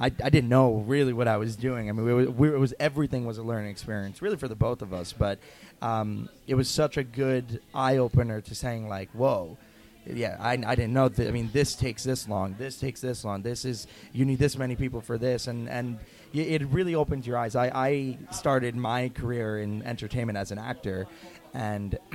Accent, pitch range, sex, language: American, 115-135 Hz, male, English